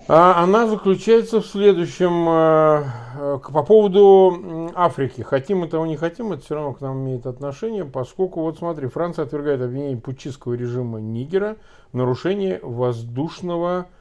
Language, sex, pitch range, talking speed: Russian, male, 125-170 Hz, 135 wpm